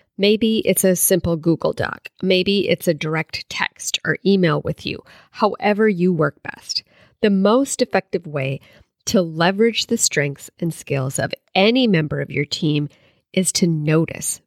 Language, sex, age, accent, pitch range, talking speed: English, female, 40-59, American, 160-210 Hz, 160 wpm